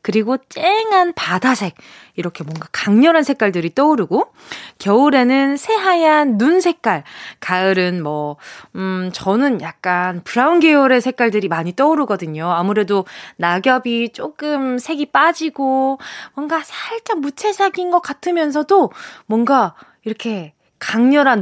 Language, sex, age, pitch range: Korean, female, 20-39, 195-295 Hz